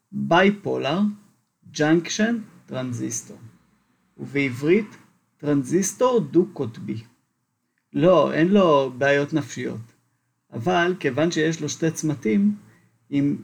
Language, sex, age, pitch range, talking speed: Hebrew, male, 40-59, 125-175 Hz, 80 wpm